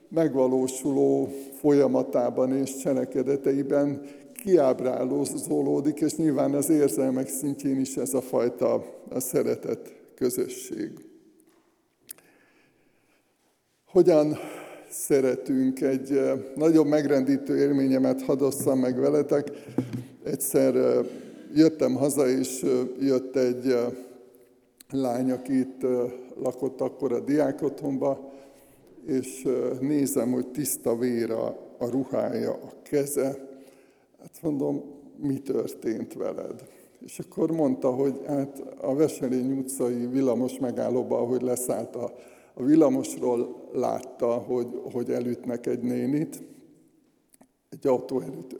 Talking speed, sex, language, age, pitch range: 95 wpm, male, Hungarian, 60-79, 130-145 Hz